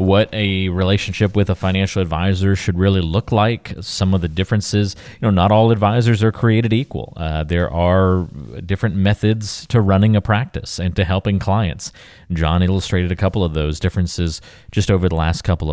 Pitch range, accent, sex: 90-115 Hz, American, male